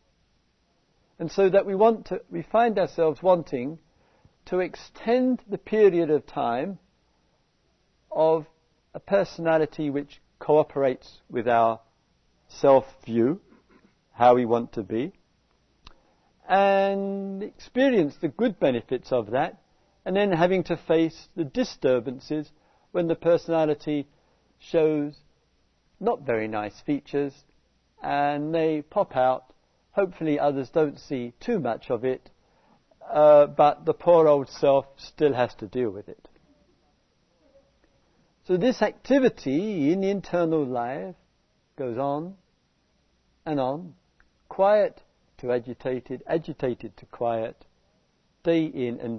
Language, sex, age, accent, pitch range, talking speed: English, male, 50-69, British, 130-180 Hz, 115 wpm